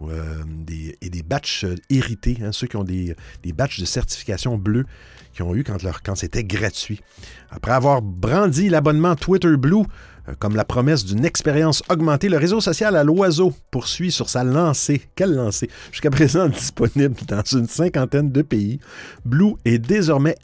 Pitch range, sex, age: 105-165 Hz, male, 50-69